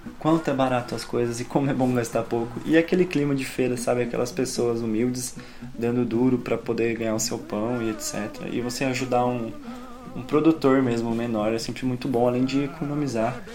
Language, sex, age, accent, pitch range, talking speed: Portuguese, male, 20-39, Brazilian, 120-160 Hz, 200 wpm